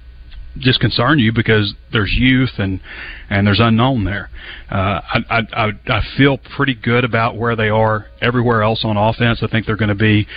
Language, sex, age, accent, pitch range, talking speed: English, male, 30-49, American, 100-115 Hz, 185 wpm